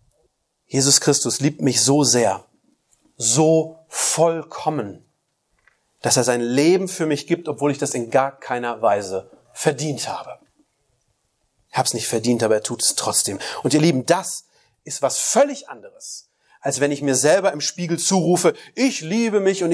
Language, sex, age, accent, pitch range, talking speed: German, male, 30-49, German, 120-165 Hz, 165 wpm